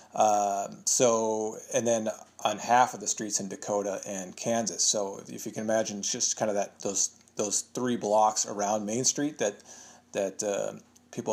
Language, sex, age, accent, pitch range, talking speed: English, male, 30-49, American, 105-120 Hz, 180 wpm